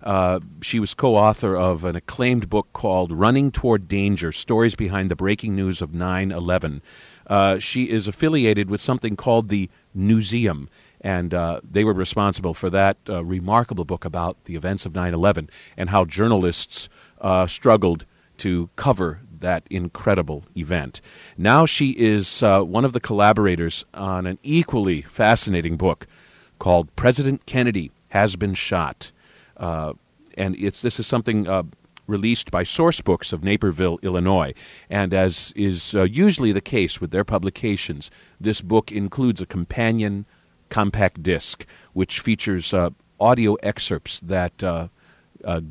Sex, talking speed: male, 145 wpm